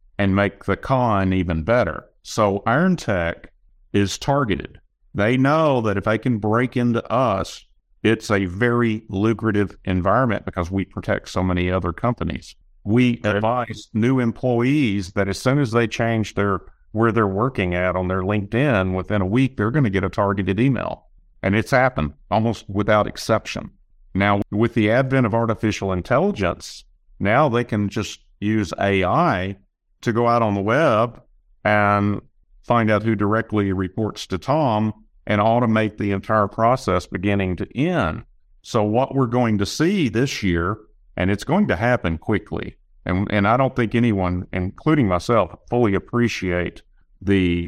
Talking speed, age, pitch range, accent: 160 wpm, 50-69, 95-120 Hz, American